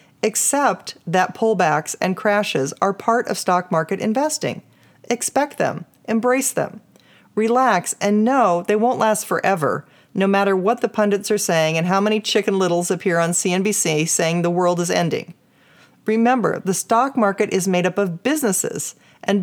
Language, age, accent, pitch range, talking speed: English, 40-59, American, 180-235 Hz, 160 wpm